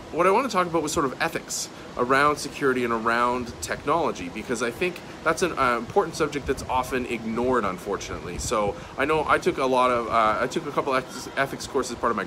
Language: English